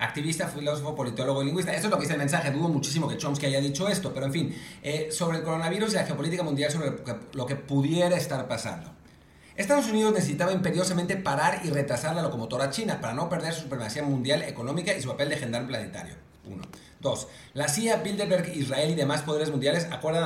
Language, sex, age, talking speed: English, male, 40-59, 205 wpm